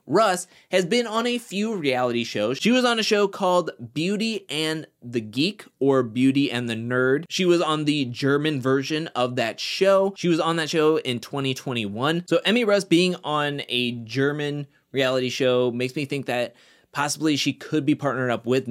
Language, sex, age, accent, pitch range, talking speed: English, male, 20-39, American, 125-170 Hz, 190 wpm